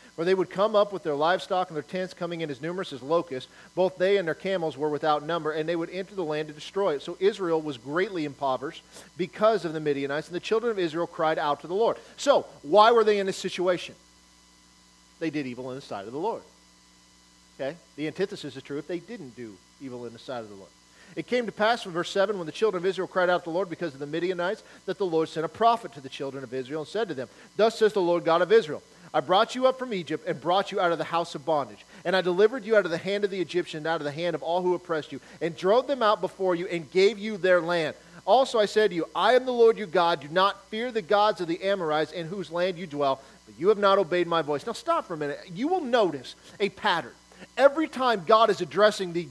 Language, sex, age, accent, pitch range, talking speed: English, male, 40-59, American, 155-210 Hz, 270 wpm